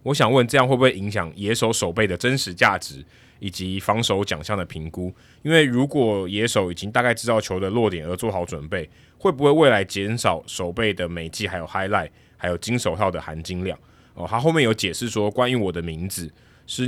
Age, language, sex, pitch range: 20-39, Chinese, male, 90-115 Hz